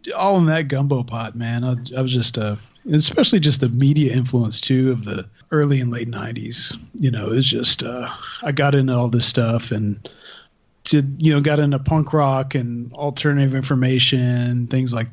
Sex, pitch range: male, 125-150 Hz